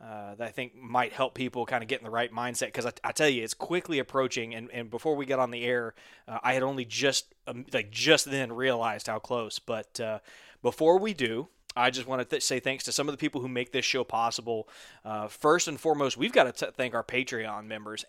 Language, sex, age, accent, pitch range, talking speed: English, male, 20-39, American, 120-150 Hz, 250 wpm